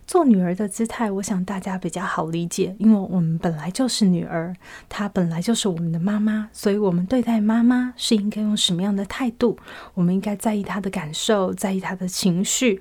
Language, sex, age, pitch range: Chinese, female, 30-49, 185-235 Hz